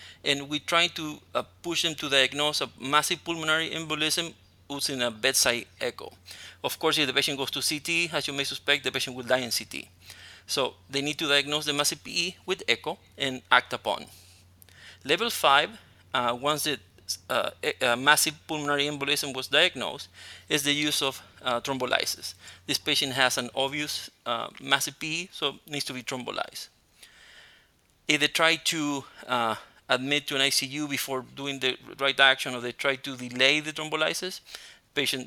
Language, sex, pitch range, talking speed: English, male, 130-155 Hz, 175 wpm